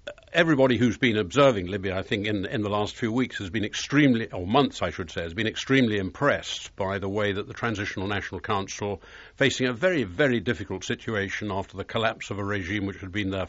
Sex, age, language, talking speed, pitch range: male, 60-79, English, 220 wpm, 100-120 Hz